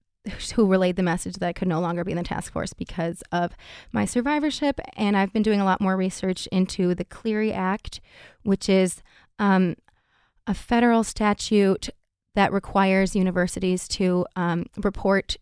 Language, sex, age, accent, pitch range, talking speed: English, female, 20-39, American, 180-195 Hz, 165 wpm